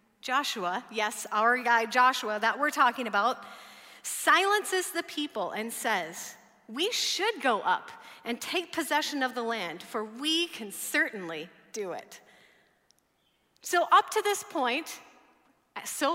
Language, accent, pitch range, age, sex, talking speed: English, American, 200-305 Hz, 30-49, female, 135 wpm